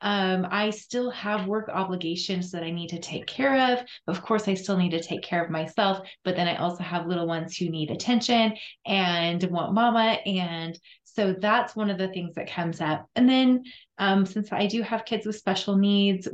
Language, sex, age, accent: English, female, 20-39, American